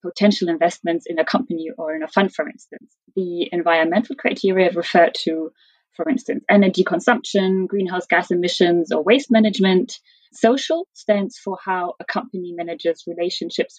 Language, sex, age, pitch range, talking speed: English, female, 30-49, 175-230 Hz, 150 wpm